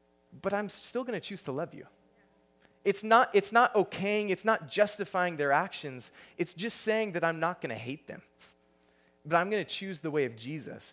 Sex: male